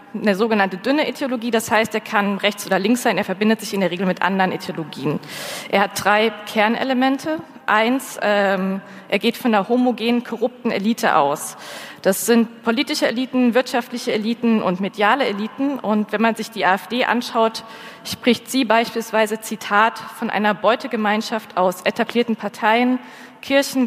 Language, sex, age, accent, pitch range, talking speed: German, female, 20-39, German, 200-230 Hz, 155 wpm